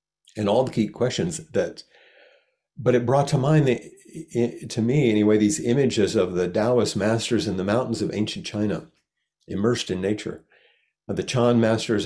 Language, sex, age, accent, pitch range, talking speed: English, male, 50-69, American, 105-135 Hz, 165 wpm